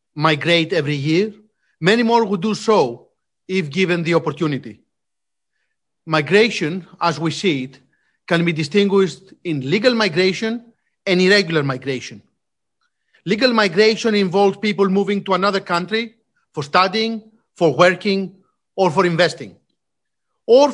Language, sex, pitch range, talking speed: English, male, 165-205 Hz, 120 wpm